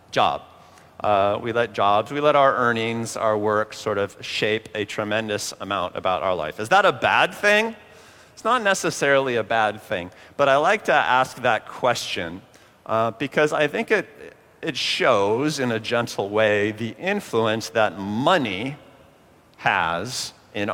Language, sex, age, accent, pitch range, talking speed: English, male, 40-59, American, 110-130 Hz, 155 wpm